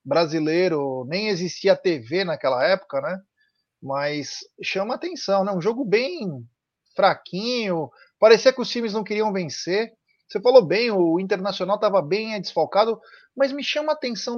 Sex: male